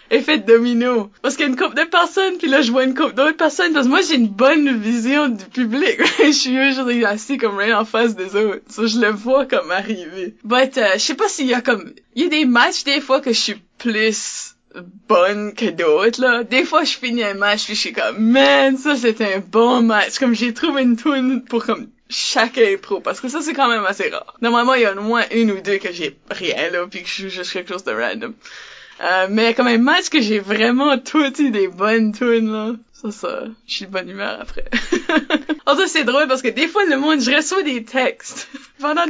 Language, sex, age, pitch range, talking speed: French, female, 20-39, 215-295 Hz, 245 wpm